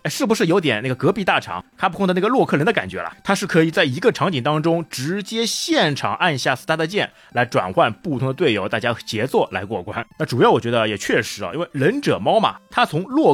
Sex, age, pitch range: male, 30-49, 115-165 Hz